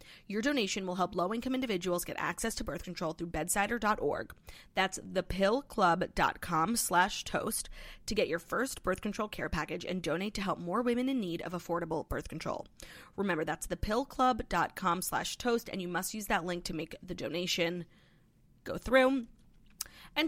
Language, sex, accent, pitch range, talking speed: English, female, American, 175-240 Hz, 165 wpm